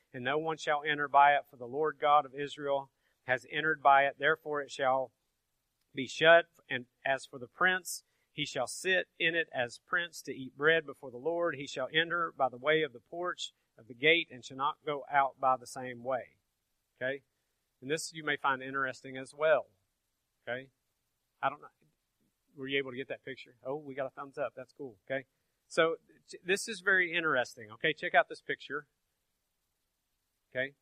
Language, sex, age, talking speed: English, male, 40-59, 195 wpm